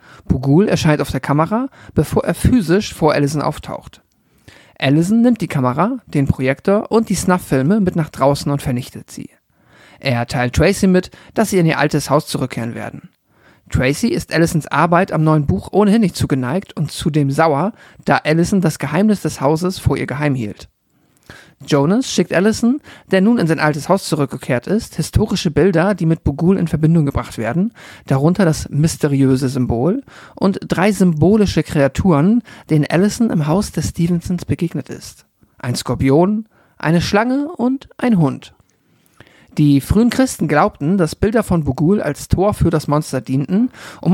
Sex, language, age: male, German, 50-69